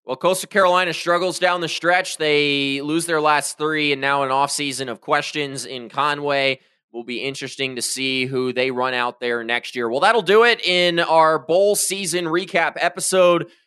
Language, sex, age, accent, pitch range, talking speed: English, male, 20-39, American, 145-170 Hz, 185 wpm